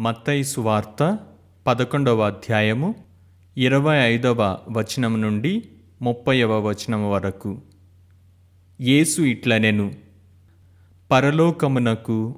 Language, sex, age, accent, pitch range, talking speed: Telugu, male, 30-49, native, 100-130 Hz, 70 wpm